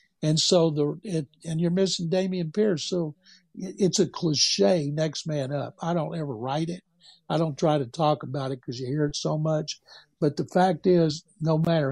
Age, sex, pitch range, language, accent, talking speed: 60-79, male, 150-180 Hz, English, American, 200 wpm